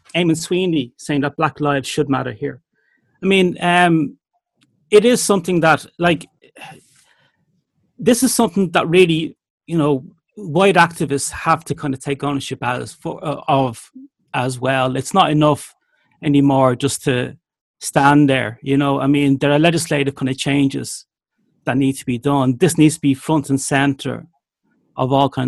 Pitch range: 130-155 Hz